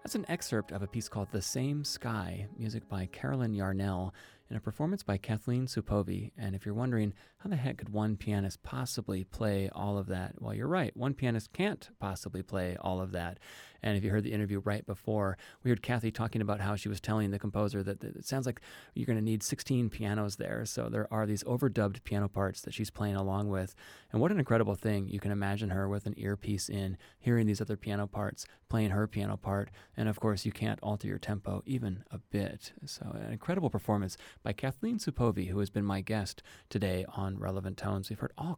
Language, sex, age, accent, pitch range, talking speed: English, male, 30-49, American, 100-115 Hz, 220 wpm